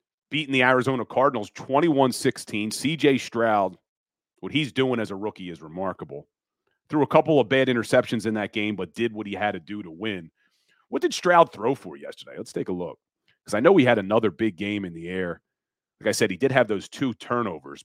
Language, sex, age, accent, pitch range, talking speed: English, male, 40-59, American, 105-145 Hz, 210 wpm